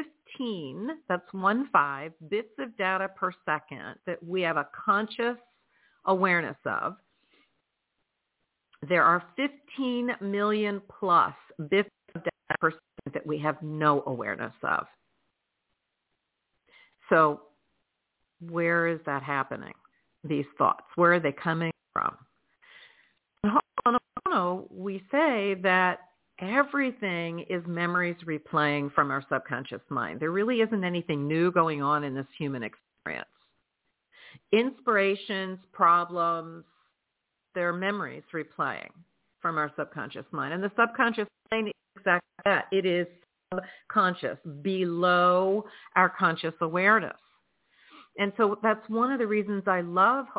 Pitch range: 165-215 Hz